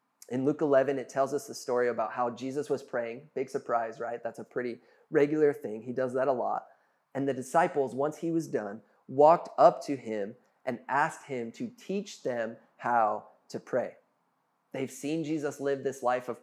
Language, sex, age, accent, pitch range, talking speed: English, male, 20-39, American, 125-160 Hz, 195 wpm